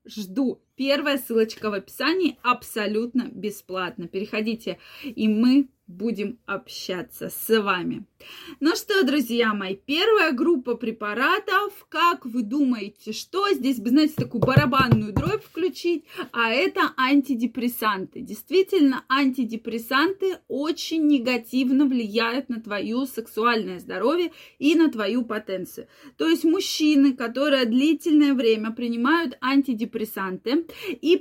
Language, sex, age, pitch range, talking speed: Russian, female, 20-39, 240-310 Hz, 110 wpm